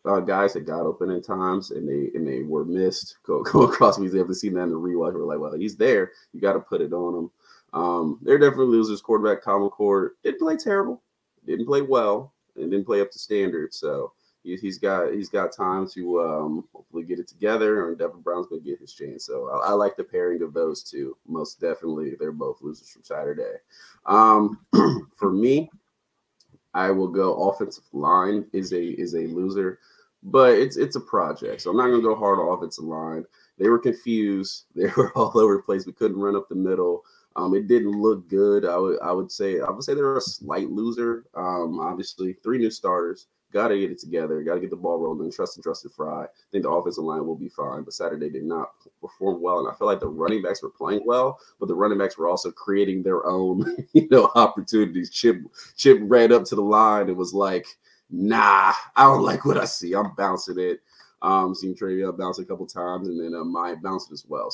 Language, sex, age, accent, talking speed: English, male, 30-49, American, 225 wpm